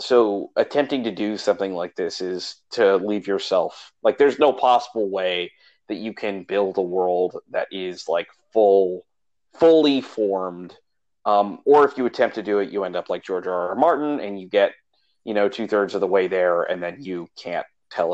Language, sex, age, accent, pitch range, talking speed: English, male, 30-49, American, 95-145 Hz, 200 wpm